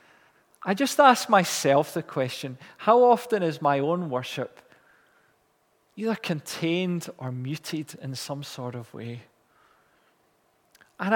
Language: English